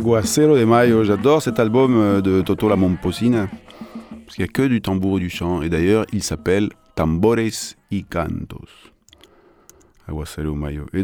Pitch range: 85-125 Hz